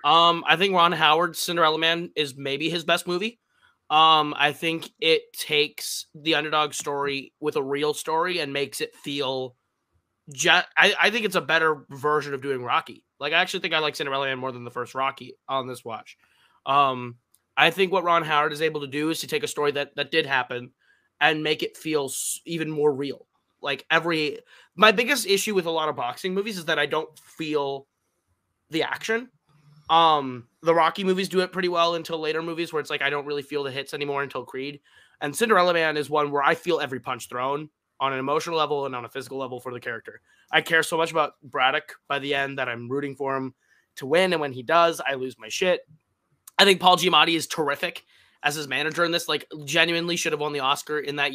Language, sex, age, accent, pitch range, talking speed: English, male, 20-39, American, 135-165 Hz, 220 wpm